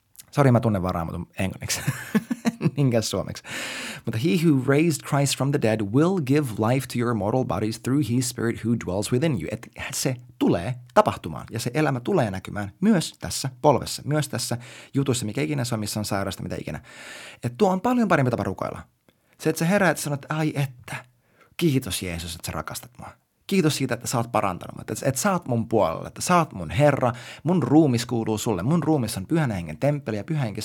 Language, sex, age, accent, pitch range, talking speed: Finnish, male, 30-49, native, 110-150 Hz, 200 wpm